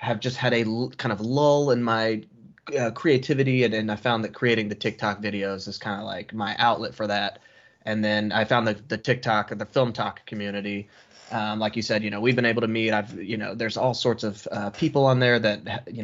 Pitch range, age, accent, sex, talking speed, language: 105-120 Hz, 20-39, American, male, 245 wpm, English